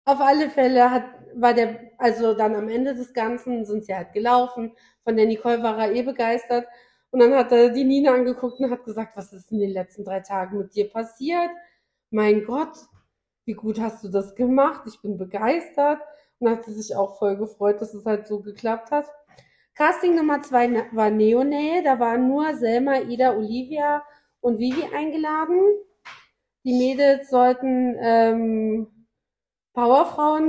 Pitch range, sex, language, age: 215-275 Hz, female, German, 30-49